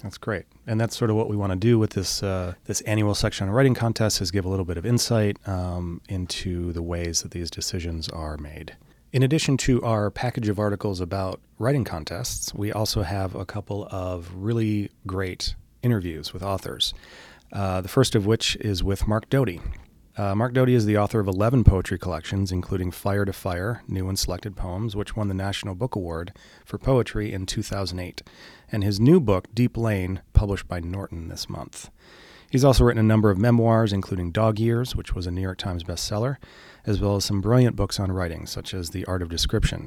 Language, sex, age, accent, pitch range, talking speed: English, male, 30-49, American, 90-110 Hz, 205 wpm